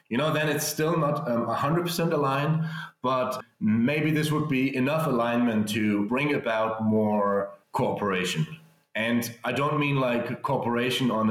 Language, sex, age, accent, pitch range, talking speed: English, male, 30-49, German, 100-130 Hz, 150 wpm